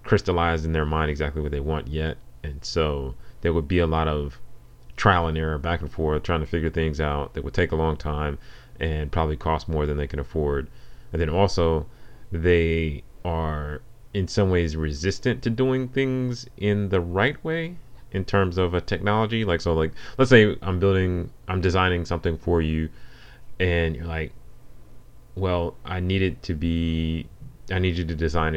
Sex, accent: male, American